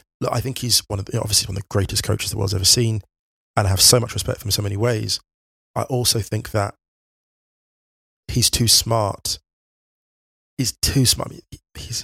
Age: 20-39